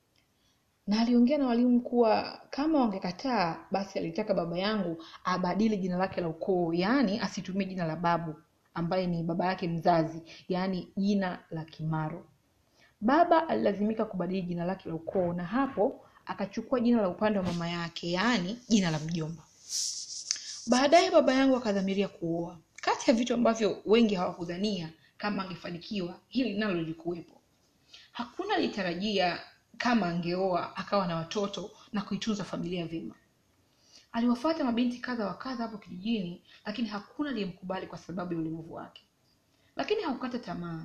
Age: 30-49